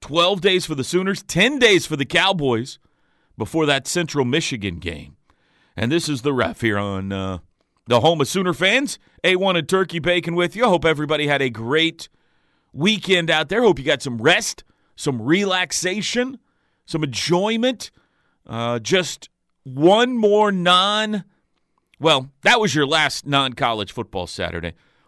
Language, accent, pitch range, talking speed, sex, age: English, American, 130-200 Hz, 155 wpm, male, 40-59